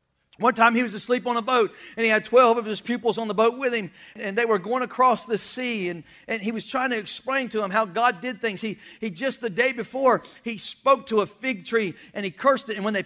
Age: 50-69